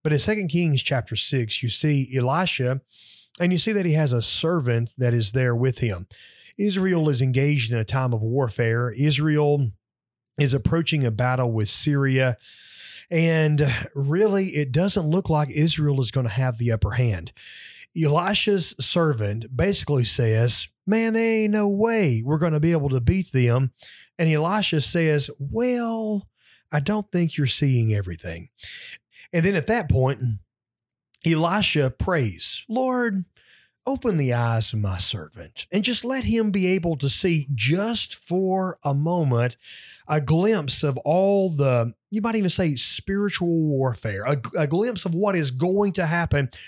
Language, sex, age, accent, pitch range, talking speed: English, male, 30-49, American, 125-185 Hz, 155 wpm